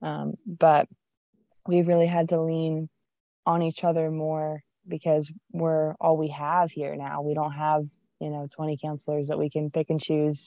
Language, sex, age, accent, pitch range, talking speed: English, female, 20-39, American, 150-165 Hz, 180 wpm